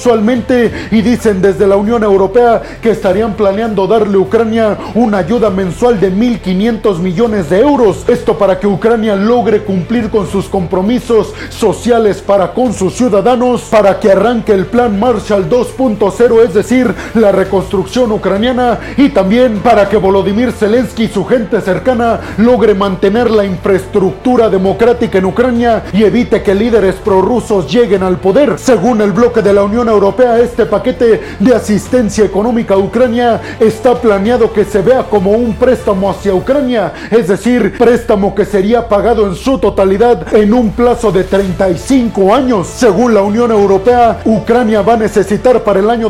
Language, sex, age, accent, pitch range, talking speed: Spanish, male, 40-59, Mexican, 200-240 Hz, 160 wpm